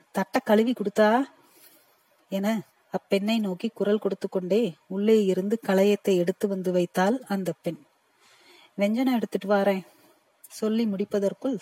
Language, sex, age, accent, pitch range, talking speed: Tamil, female, 30-49, native, 185-220 Hz, 95 wpm